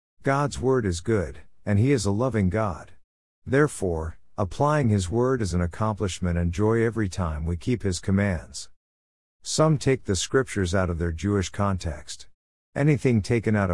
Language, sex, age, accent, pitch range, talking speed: English, male, 50-69, American, 85-115 Hz, 160 wpm